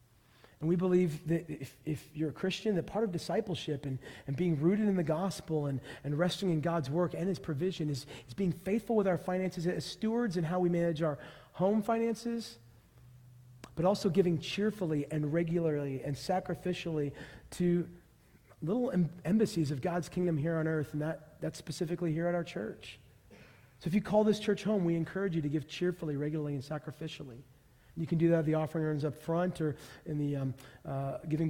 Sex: male